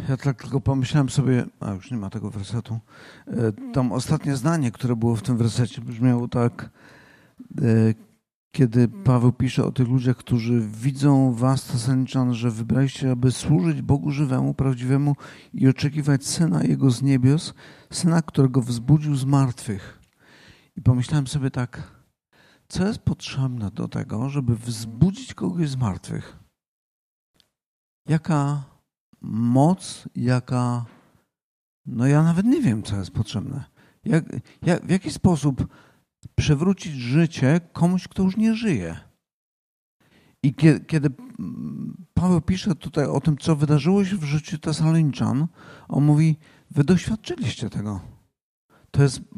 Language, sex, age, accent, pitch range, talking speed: Polish, male, 50-69, native, 120-160 Hz, 130 wpm